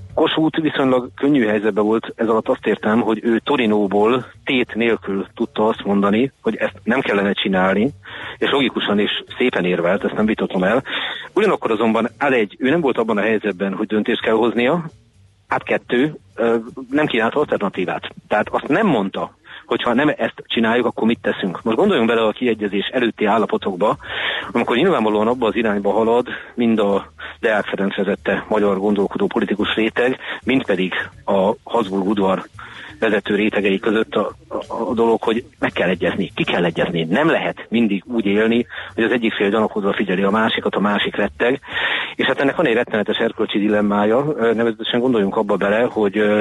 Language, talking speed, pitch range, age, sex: Hungarian, 165 wpm, 100-115 Hz, 40-59, male